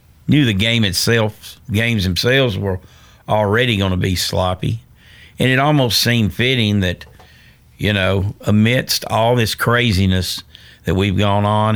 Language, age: English, 50-69